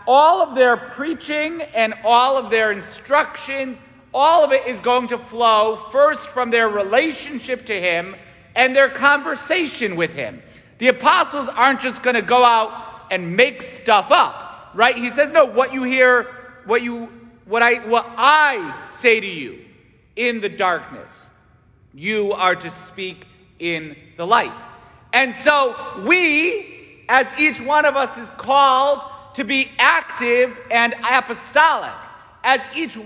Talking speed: 150 wpm